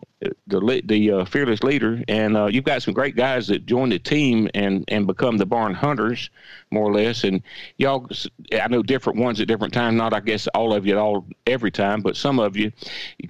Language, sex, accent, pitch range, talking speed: English, male, American, 105-135 Hz, 220 wpm